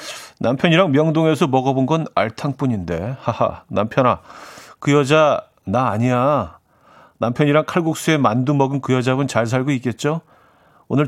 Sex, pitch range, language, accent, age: male, 105-150 Hz, Korean, native, 40-59